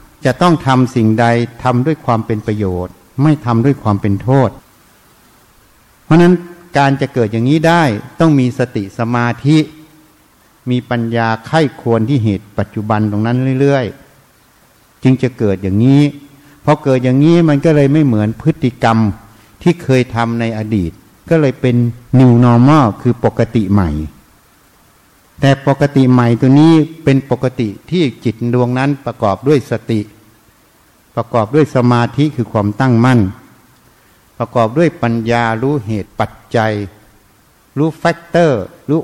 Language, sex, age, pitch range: Thai, male, 60-79, 110-145 Hz